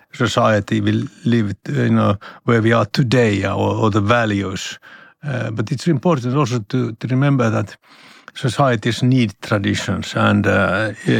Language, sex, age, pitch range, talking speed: Finnish, male, 60-79, 110-130 Hz, 145 wpm